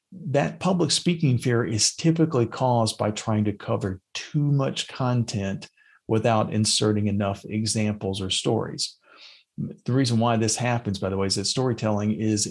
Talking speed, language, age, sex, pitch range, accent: 155 wpm, English, 40-59, male, 105-130 Hz, American